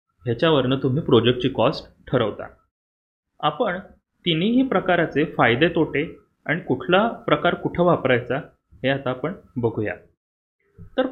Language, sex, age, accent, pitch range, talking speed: Marathi, male, 30-49, native, 125-170 Hz, 105 wpm